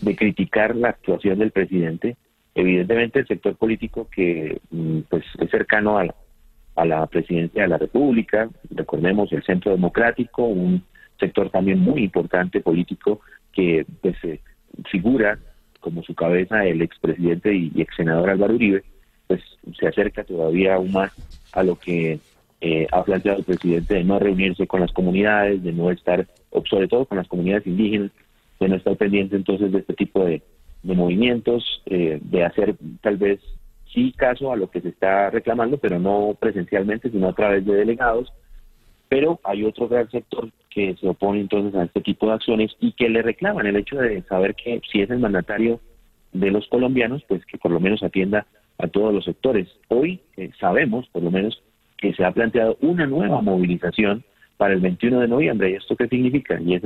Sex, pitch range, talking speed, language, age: male, 90-110 Hz, 180 wpm, Spanish, 40-59